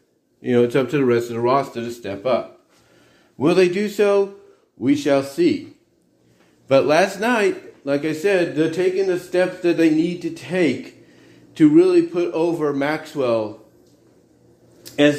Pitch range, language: 140-185 Hz, English